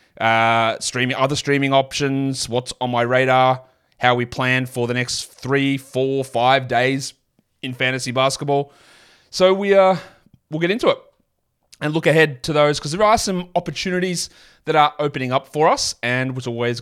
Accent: Australian